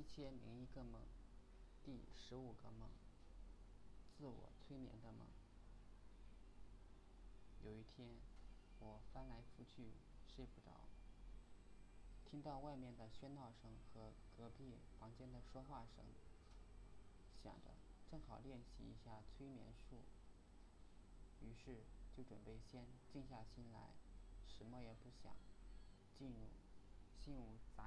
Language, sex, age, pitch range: Chinese, male, 20-39, 95-120 Hz